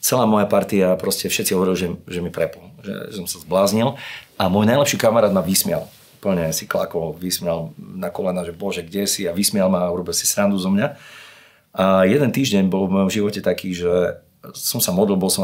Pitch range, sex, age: 90-100 Hz, male, 40-59